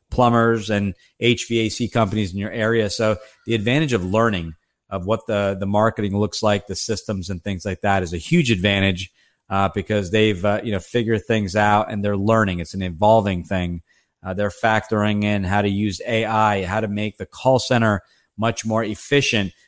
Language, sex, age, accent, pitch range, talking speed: English, male, 40-59, American, 100-115 Hz, 190 wpm